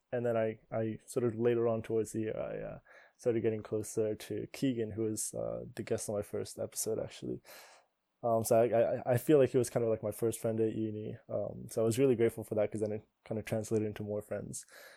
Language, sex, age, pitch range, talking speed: English, male, 20-39, 110-120 Hz, 250 wpm